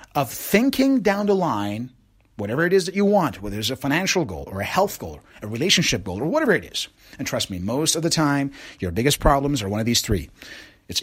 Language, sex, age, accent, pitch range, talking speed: English, male, 30-49, American, 110-160 Hz, 240 wpm